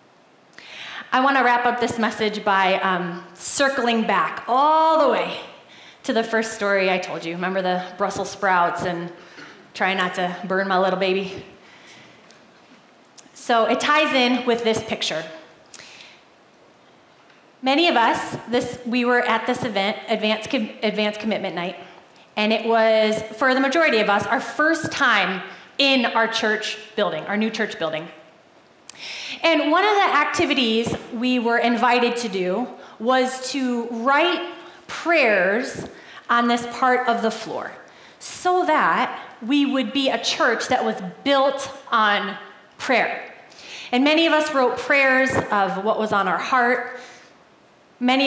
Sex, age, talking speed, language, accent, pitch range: female, 30-49, 145 wpm, English, American, 210-265 Hz